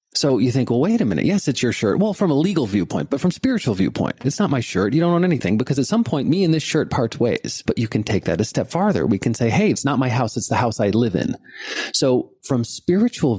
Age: 40-59